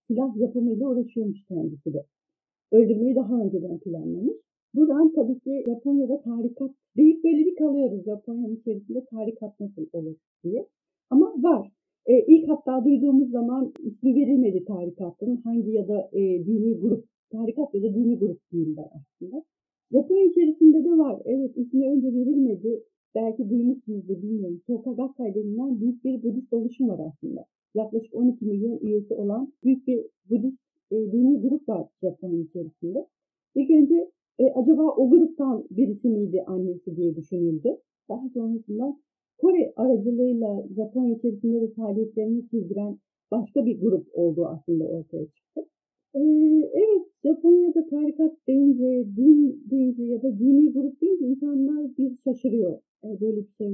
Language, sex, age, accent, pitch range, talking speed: Turkish, female, 50-69, native, 210-275 Hz, 145 wpm